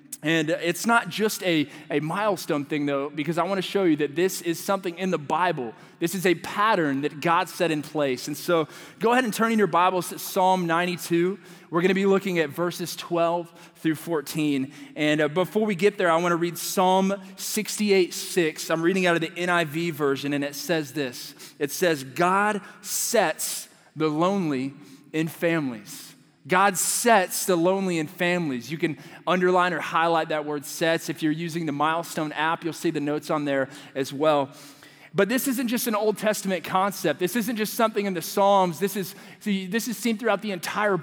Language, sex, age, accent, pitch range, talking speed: English, male, 20-39, American, 160-195 Hz, 200 wpm